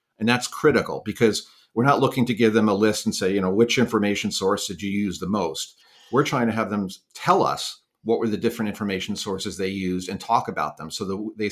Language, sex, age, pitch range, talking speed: English, male, 50-69, 105-125 Hz, 240 wpm